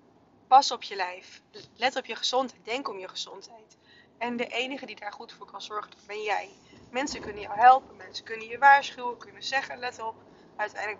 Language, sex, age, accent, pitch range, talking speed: Dutch, female, 20-39, Dutch, 200-230 Hz, 200 wpm